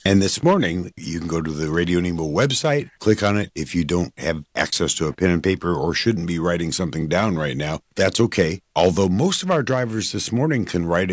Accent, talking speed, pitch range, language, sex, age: American, 230 wpm, 85-110 Hz, English, male, 50-69